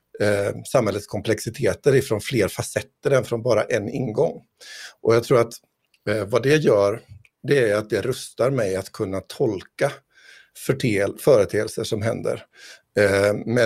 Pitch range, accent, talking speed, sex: 105-125 Hz, native, 130 wpm, male